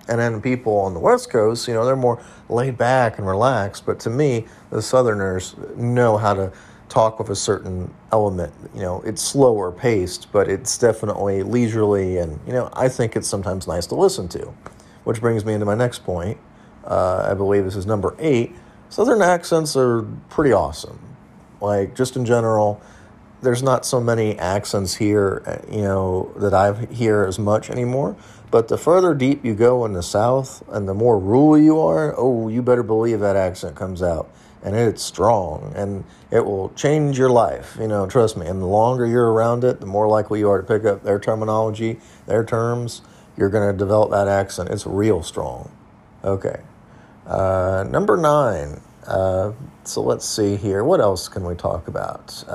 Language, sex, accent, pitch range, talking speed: English, male, American, 100-120 Hz, 185 wpm